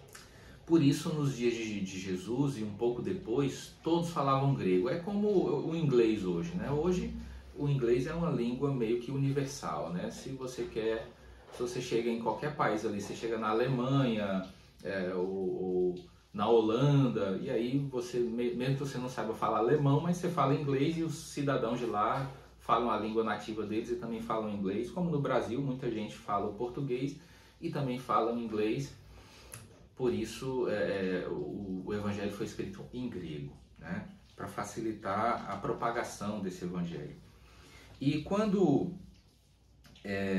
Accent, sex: Brazilian, male